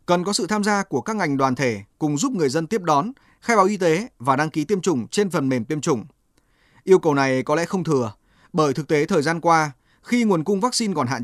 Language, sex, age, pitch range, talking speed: Vietnamese, male, 20-39, 140-195 Hz, 260 wpm